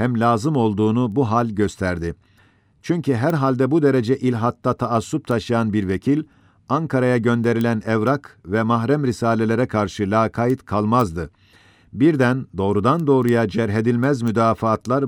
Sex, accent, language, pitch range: male, native, Turkish, 105-130 Hz